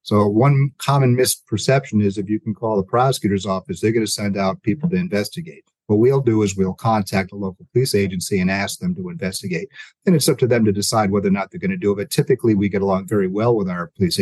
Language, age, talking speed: English, 50-69, 255 wpm